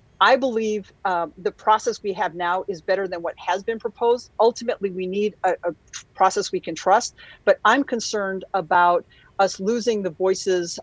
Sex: female